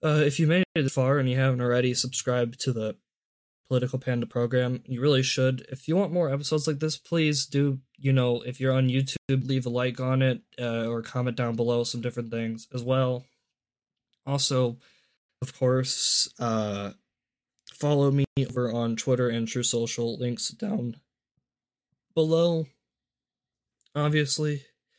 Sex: male